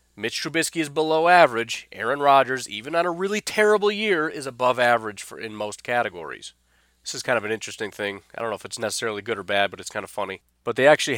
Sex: male